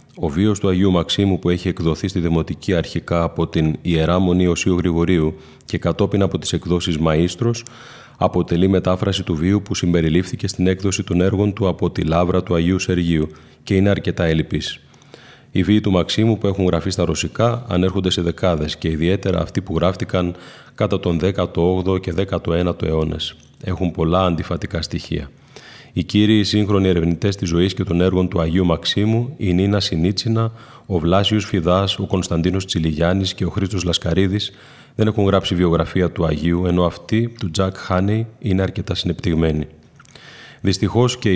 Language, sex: Greek, male